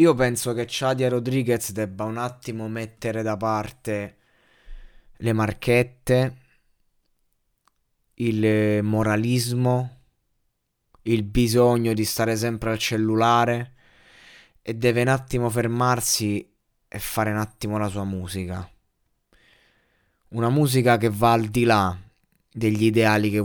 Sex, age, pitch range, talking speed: male, 20-39, 105-125 Hz, 115 wpm